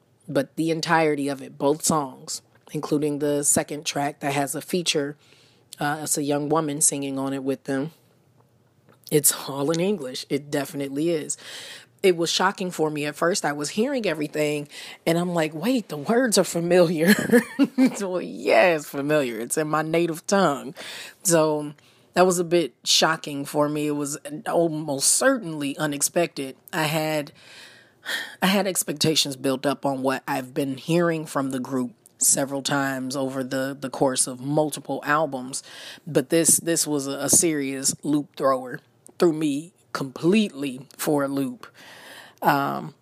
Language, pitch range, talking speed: English, 140-165 Hz, 155 wpm